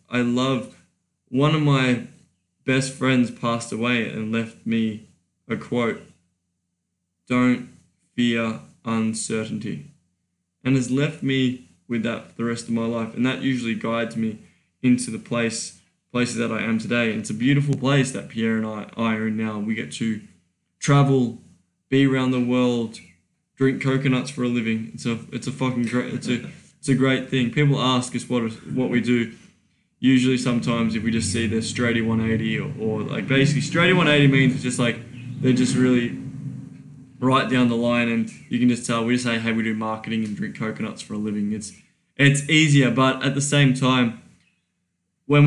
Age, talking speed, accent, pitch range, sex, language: 10-29, 185 wpm, Australian, 115-130 Hz, male, English